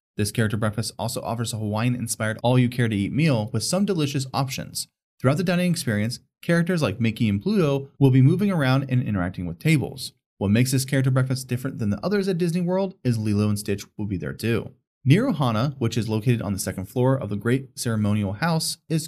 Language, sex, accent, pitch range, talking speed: English, male, American, 110-145 Hz, 205 wpm